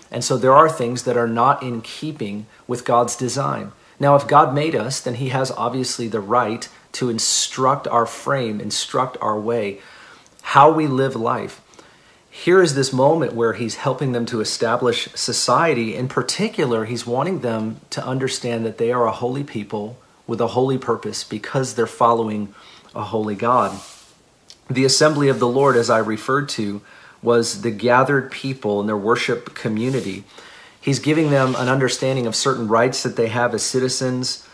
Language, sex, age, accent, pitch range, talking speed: English, male, 40-59, American, 110-135 Hz, 170 wpm